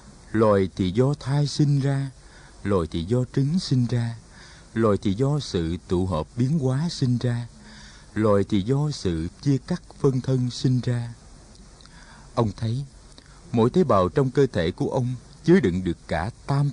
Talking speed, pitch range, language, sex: 170 wpm, 95-140 Hz, Vietnamese, male